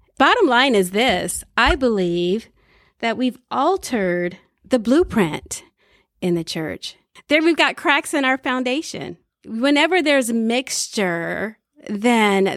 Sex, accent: female, American